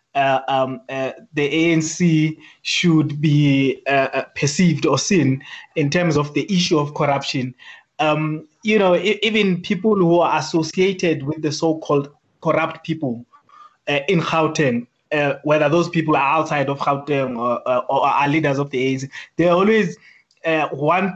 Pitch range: 145-170 Hz